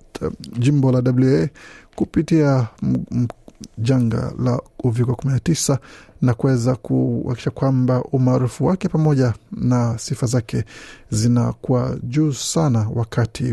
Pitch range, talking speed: 120-140 Hz, 110 wpm